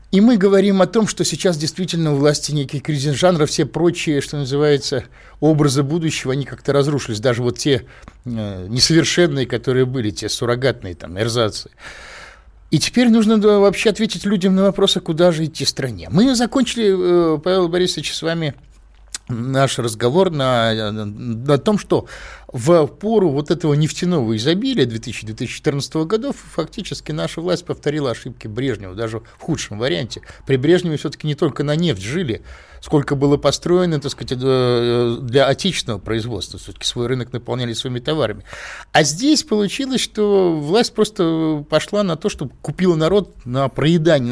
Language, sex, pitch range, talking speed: Russian, male, 125-175 Hz, 150 wpm